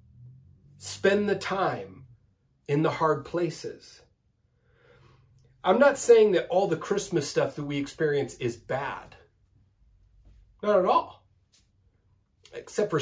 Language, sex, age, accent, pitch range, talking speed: English, male, 30-49, American, 115-165 Hz, 115 wpm